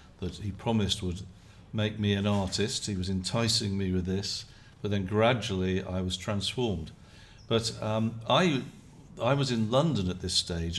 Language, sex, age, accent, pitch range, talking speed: English, male, 50-69, British, 95-115 Hz, 165 wpm